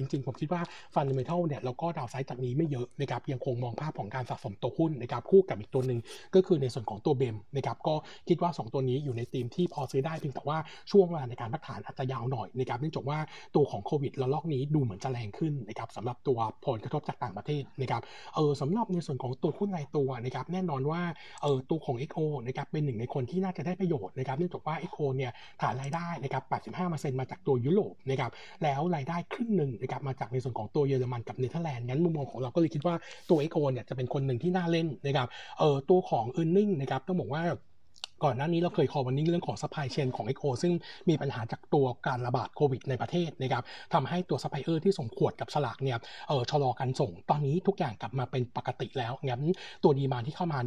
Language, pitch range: Thai, 130-170 Hz